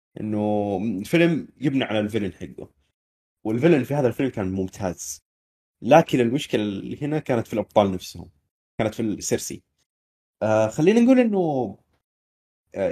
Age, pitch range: 20-39, 100-130 Hz